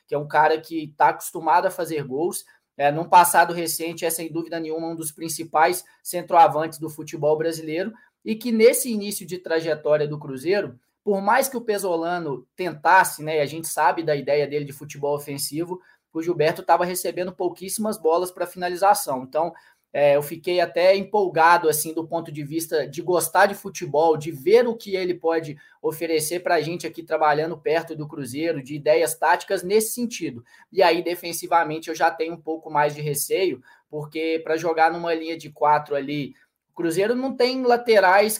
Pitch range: 155-180 Hz